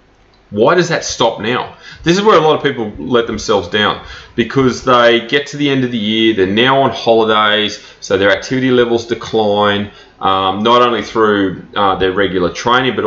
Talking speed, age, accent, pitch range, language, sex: 195 wpm, 30-49, Australian, 105-130 Hz, English, male